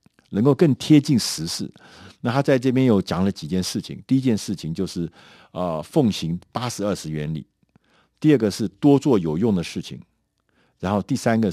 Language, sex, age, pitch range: Chinese, male, 50-69, 80-115 Hz